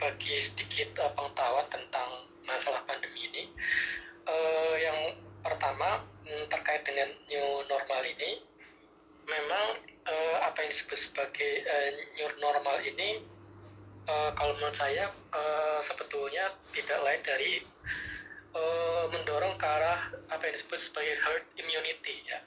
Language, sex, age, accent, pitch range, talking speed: Indonesian, male, 20-39, native, 145-210 Hz, 125 wpm